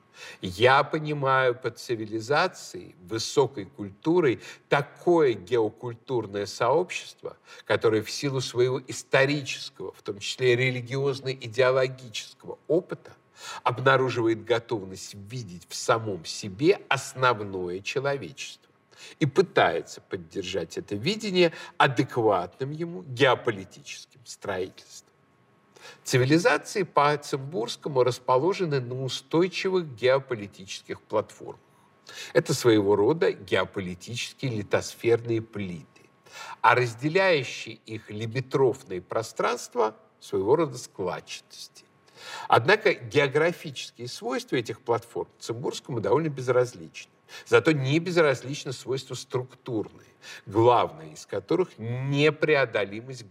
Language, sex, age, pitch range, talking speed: Russian, male, 50-69, 115-150 Hz, 85 wpm